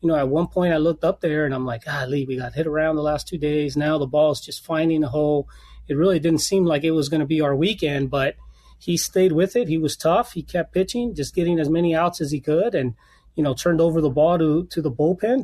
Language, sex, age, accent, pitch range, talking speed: English, male, 30-49, American, 145-175 Hz, 275 wpm